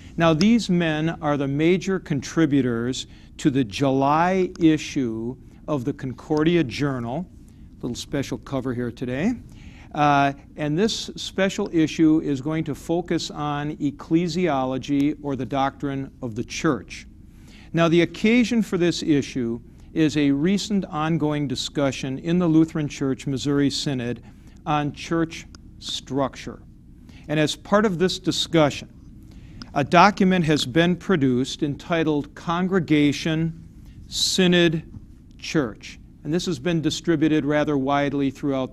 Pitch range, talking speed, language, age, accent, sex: 135-170 Hz, 125 wpm, English, 50-69, American, male